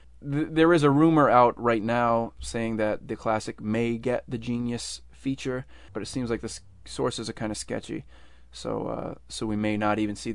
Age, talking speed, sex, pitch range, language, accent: 20-39, 195 wpm, male, 105-125 Hz, English, American